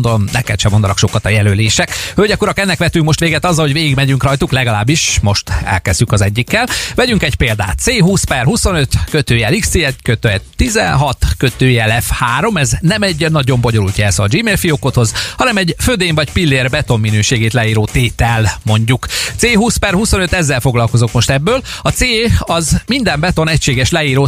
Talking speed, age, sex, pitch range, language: 155 wpm, 30-49, male, 115-155 Hz, Hungarian